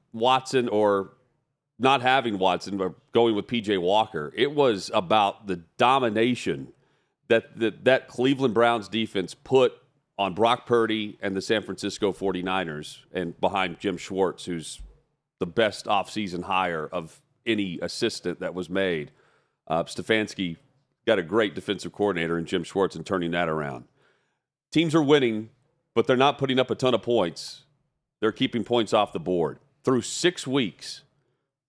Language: English